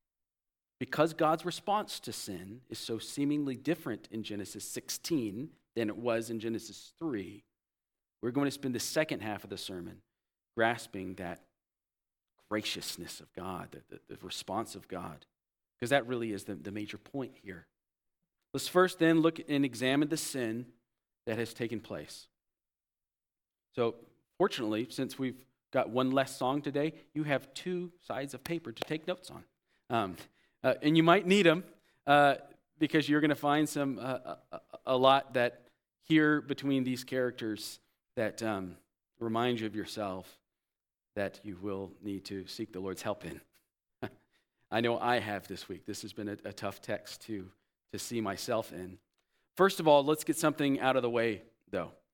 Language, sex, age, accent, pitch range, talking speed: English, male, 40-59, American, 105-145 Hz, 170 wpm